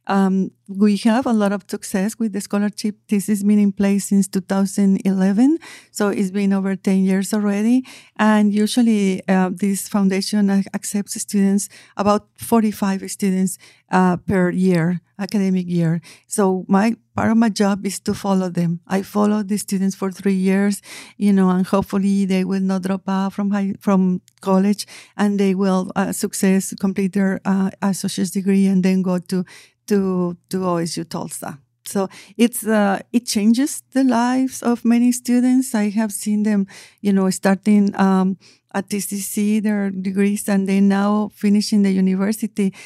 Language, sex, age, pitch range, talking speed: English, female, 50-69, 195-210 Hz, 160 wpm